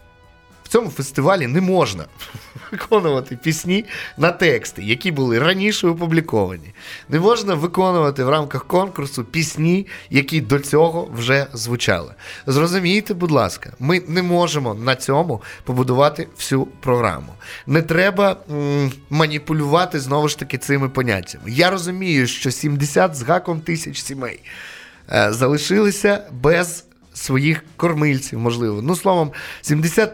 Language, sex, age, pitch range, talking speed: Ukrainian, male, 20-39, 120-170 Hz, 120 wpm